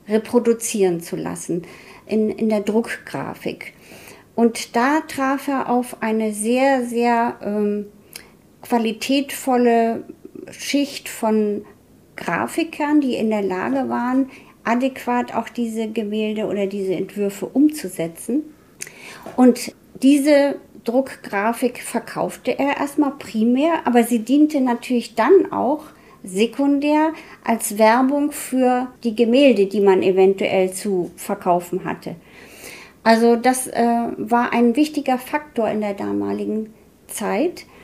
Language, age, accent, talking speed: German, 50-69, German, 110 wpm